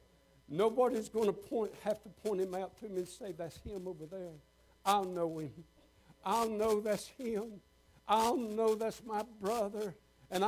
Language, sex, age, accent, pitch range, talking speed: English, male, 60-79, American, 155-235 Hz, 165 wpm